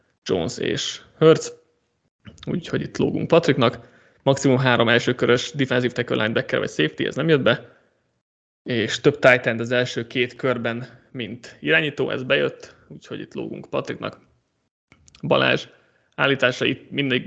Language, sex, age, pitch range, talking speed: Hungarian, male, 20-39, 115-135 Hz, 135 wpm